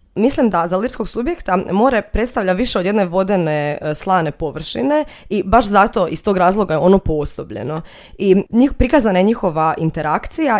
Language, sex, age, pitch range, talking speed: Croatian, female, 20-39, 160-210 Hz, 160 wpm